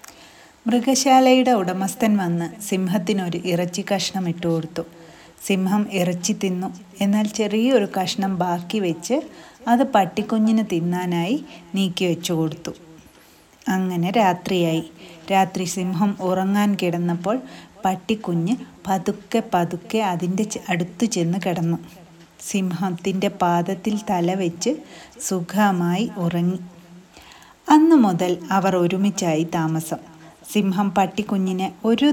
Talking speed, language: 90 wpm, Malayalam